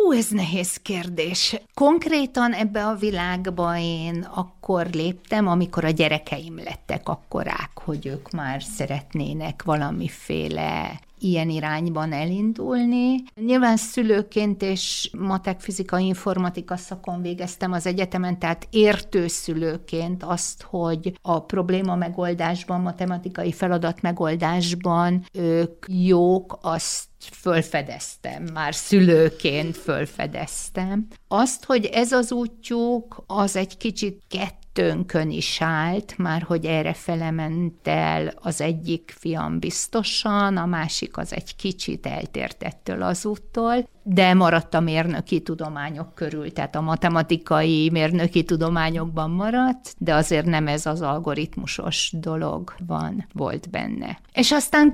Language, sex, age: Hungarian, female, 50-69